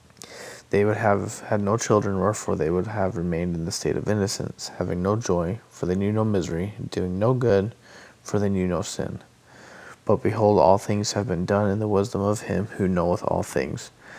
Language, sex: English, male